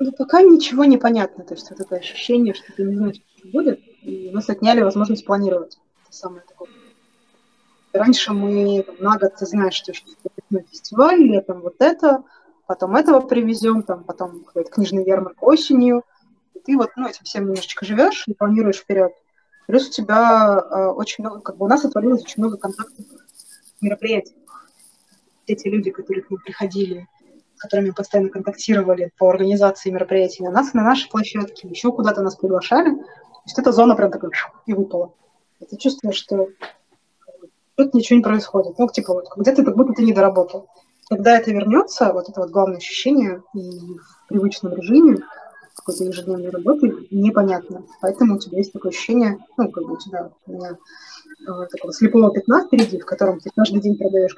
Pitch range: 190-245 Hz